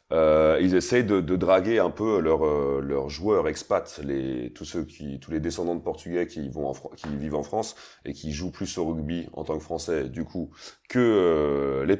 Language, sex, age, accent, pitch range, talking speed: French, male, 30-49, French, 80-110 Hz, 205 wpm